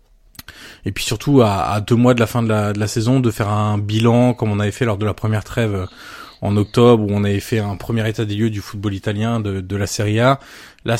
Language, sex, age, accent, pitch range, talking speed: French, male, 20-39, French, 105-130 Hz, 250 wpm